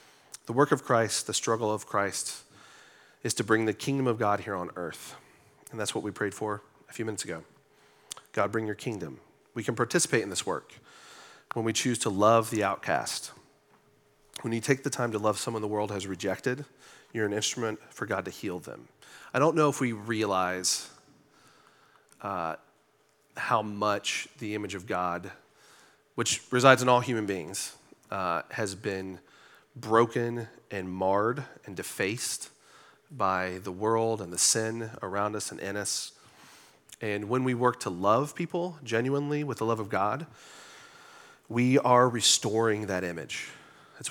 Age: 30-49